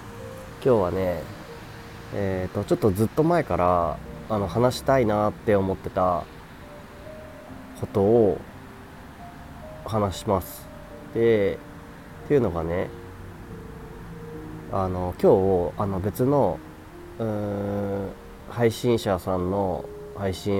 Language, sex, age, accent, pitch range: Japanese, male, 30-49, native, 85-105 Hz